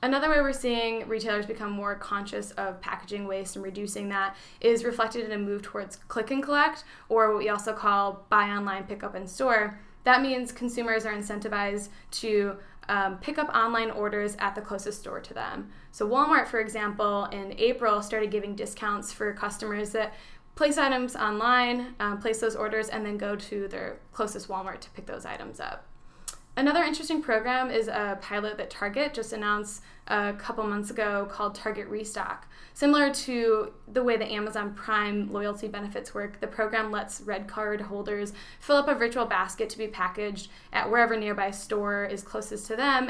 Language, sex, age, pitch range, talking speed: English, female, 10-29, 205-230 Hz, 180 wpm